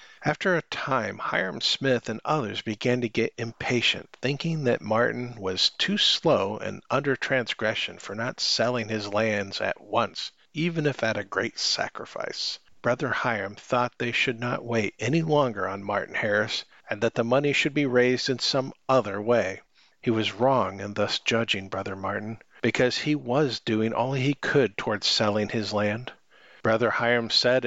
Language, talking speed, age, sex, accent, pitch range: English, 170 wpm, 50-69, male, American, 110-130 Hz